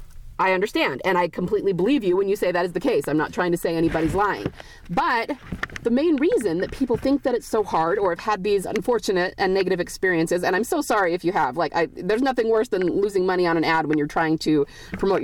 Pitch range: 175-240 Hz